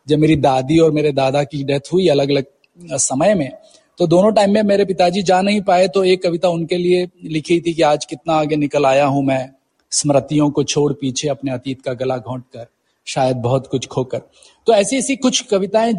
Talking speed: 210 wpm